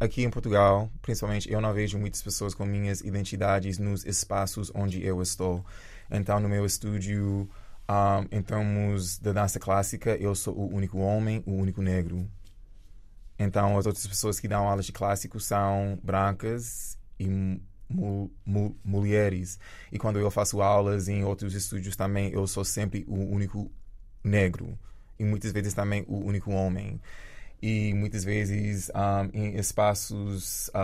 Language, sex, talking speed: Portuguese, male, 150 wpm